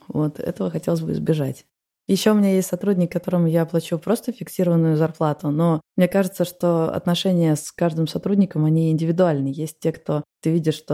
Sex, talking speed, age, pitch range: female, 175 wpm, 20-39, 145-175 Hz